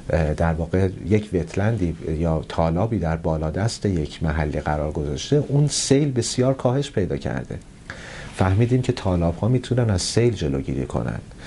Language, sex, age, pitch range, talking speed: Persian, male, 40-59, 85-125 Hz, 145 wpm